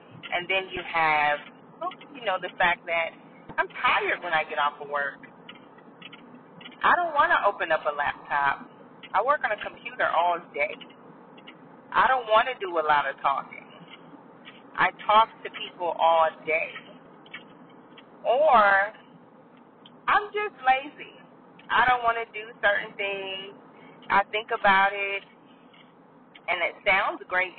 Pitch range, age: 155-230 Hz, 40-59